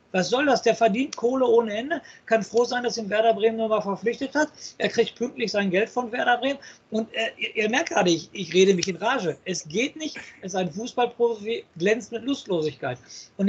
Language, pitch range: German, 180-225 Hz